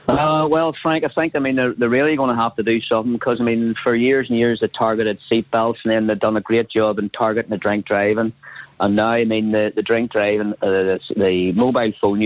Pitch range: 105-135 Hz